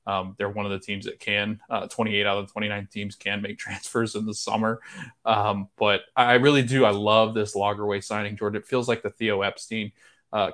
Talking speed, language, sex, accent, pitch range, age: 215 wpm, English, male, American, 100-110 Hz, 20-39